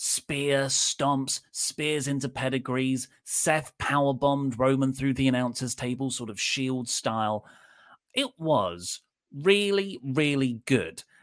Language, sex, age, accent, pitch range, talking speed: English, male, 30-49, British, 120-160 Hz, 120 wpm